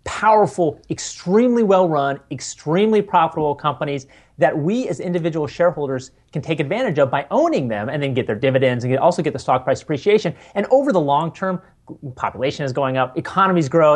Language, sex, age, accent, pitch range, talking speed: English, male, 30-49, American, 130-180 Hz, 175 wpm